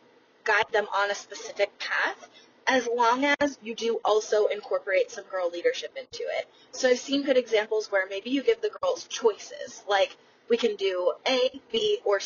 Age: 20-39